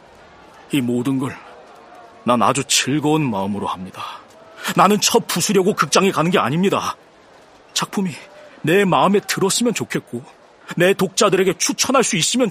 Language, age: Korean, 40-59